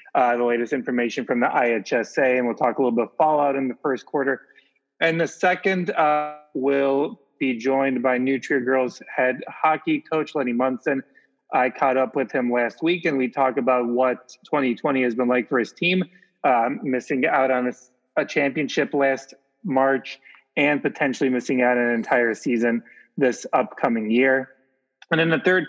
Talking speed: 180 wpm